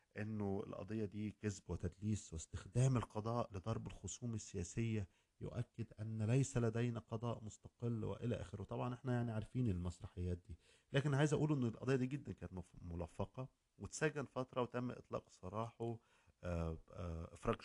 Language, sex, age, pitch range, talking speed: Arabic, male, 50-69, 90-120 Hz, 135 wpm